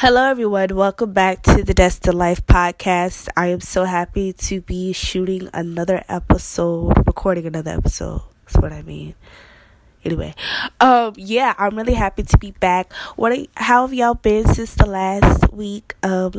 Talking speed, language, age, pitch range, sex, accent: 165 wpm, English, 20-39, 175-205 Hz, female, American